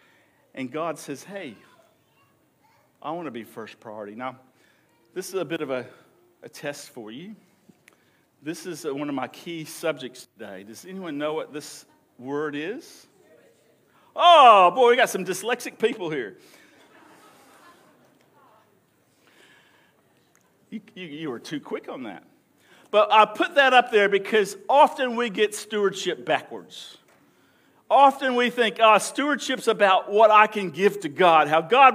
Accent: American